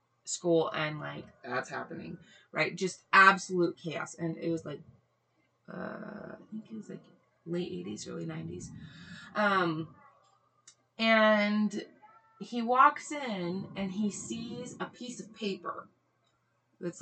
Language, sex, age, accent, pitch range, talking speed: English, female, 20-39, American, 170-235 Hz, 125 wpm